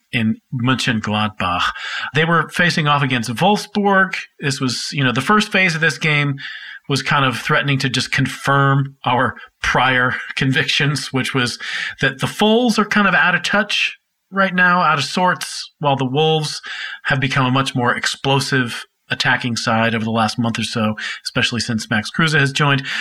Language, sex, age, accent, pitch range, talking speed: English, male, 40-59, American, 115-155 Hz, 175 wpm